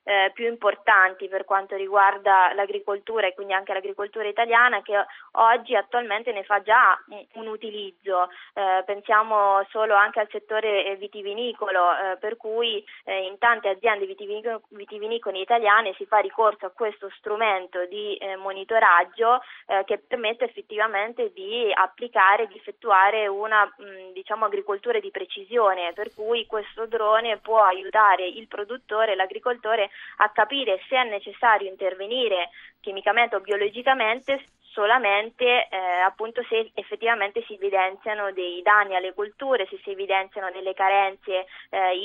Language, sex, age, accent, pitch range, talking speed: Italian, female, 20-39, native, 195-225 Hz, 135 wpm